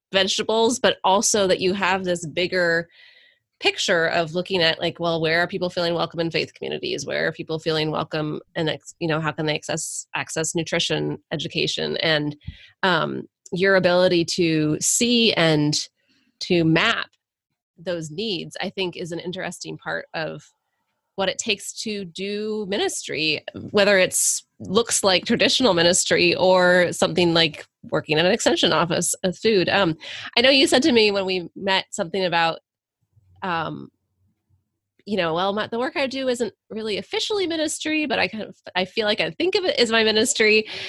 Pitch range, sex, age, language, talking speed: 165-220 Hz, female, 20-39, English, 170 wpm